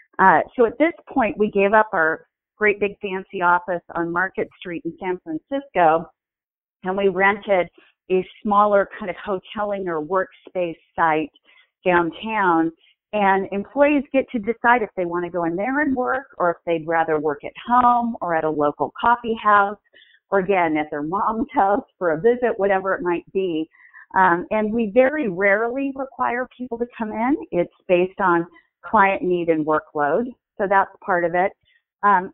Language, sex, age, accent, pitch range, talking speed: English, female, 40-59, American, 170-215 Hz, 175 wpm